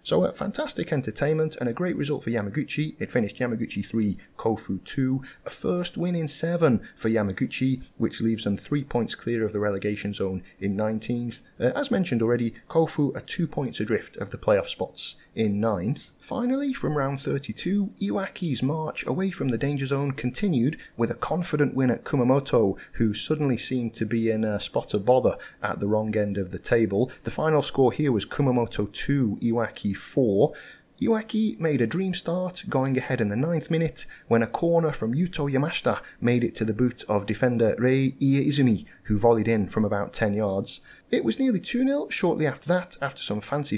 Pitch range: 110-155 Hz